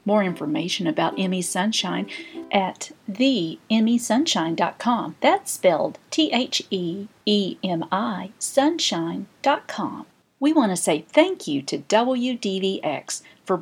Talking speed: 85 wpm